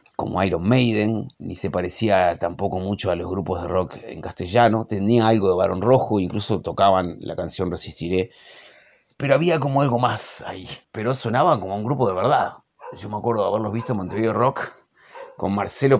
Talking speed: 185 wpm